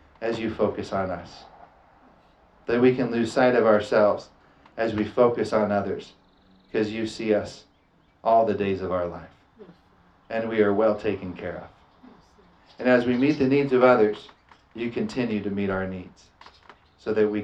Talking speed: 175 wpm